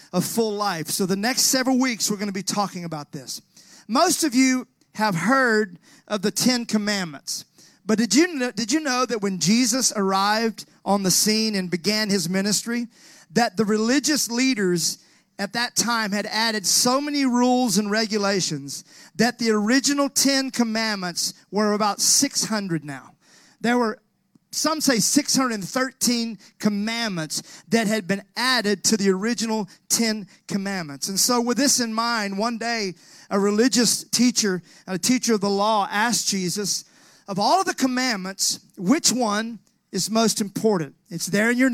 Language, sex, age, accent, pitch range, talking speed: English, male, 40-59, American, 195-240 Hz, 155 wpm